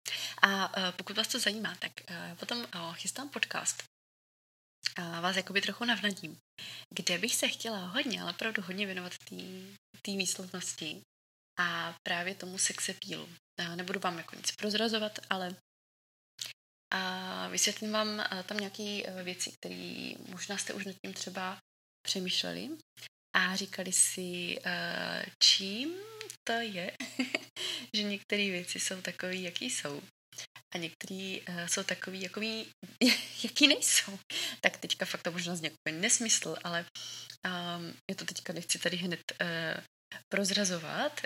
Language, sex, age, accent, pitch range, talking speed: Czech, female, 20-39, native, 175-210 Hz, 135 wpm